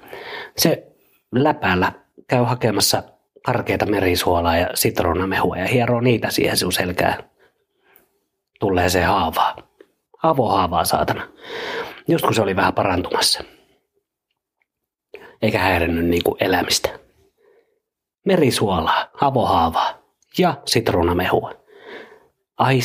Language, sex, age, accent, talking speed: Finnish, male, 30-49, native, 85 wpm